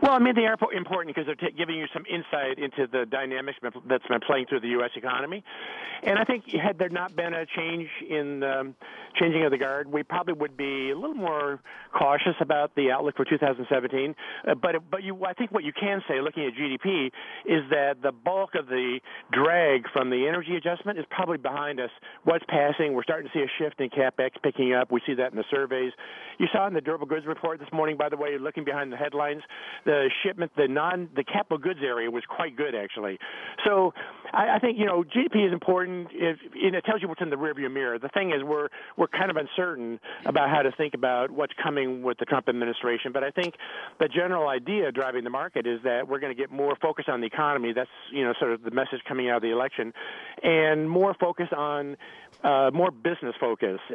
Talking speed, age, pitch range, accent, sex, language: 225 wpm, 50-69, 135-175 Hz, American, male, English